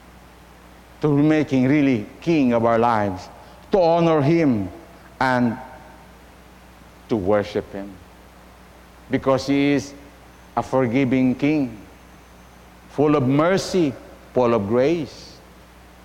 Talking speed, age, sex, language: 95 wpm, 50-69, male, English